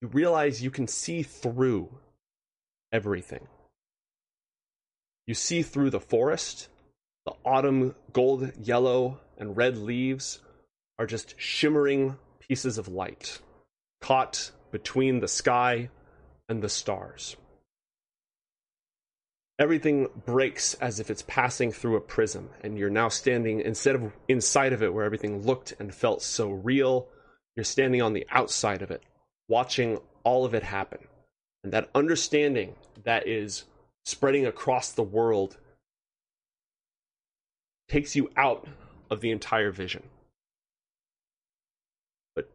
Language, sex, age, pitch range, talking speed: English, male, 30-49, 105-135 Hz, 120 wpm